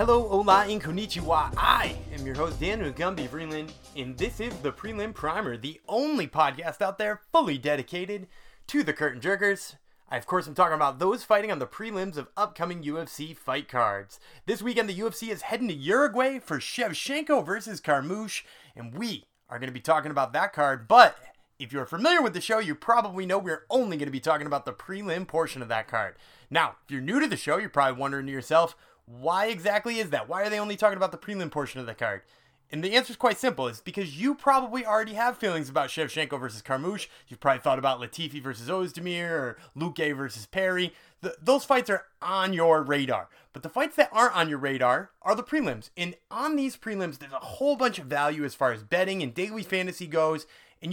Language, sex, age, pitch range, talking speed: English, male, 30-49, 145-210 Hz, 215 wpm